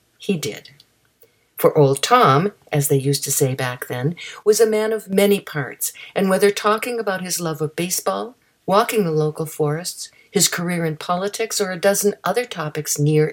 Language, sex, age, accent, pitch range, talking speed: English, female, 60-79, American, 145-205 Hz, 180 wpm